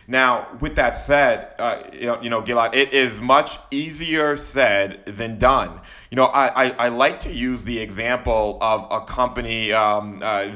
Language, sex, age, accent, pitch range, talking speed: English, male, 30-49, American, 110-135 Hz, 180 wpm